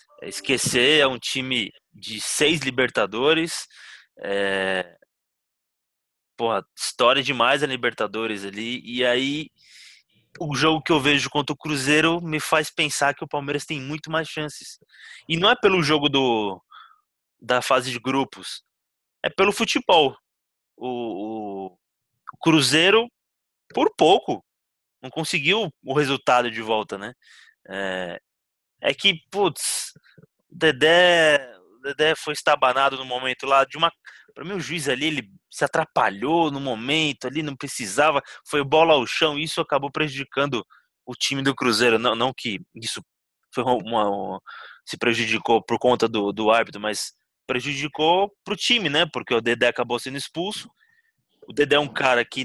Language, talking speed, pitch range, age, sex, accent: Portuguese, 150 wpm, 125-160 Hz, 20-39, male, Brazilian